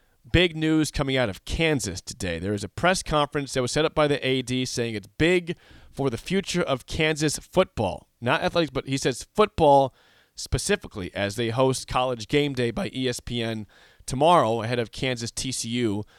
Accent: American